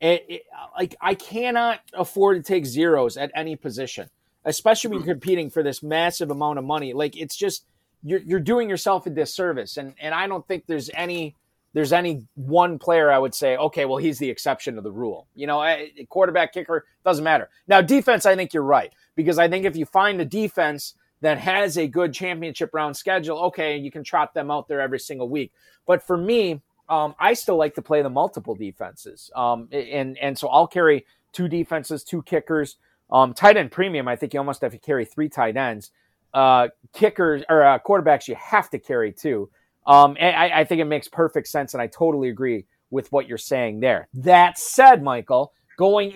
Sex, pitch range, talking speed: male, 145-185 Hz, 205 wpm